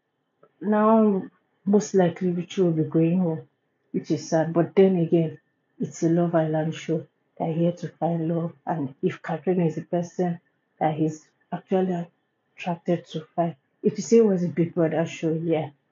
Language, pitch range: English, 160-185 Hz